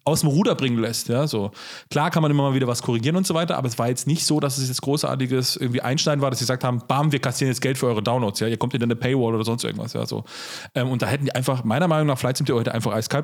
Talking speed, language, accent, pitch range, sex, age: 315 wpm, German, German, 115-145 Hz, male, 30-49